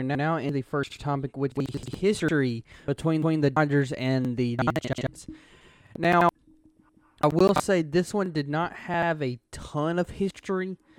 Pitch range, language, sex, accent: 125-155 Hz, English, male, American